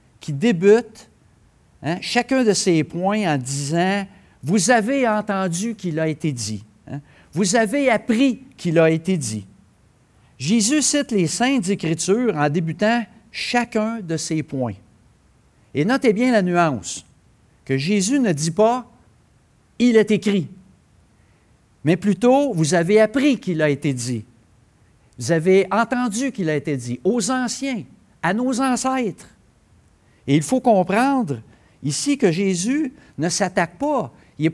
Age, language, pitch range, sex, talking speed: 60-79, French, 140-215 Hz, male, 155 wpm